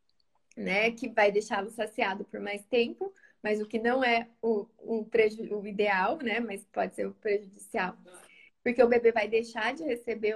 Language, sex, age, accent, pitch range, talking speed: Portuguese, female, 20-39, Brazilian, 215-275 Hz, 180 wpm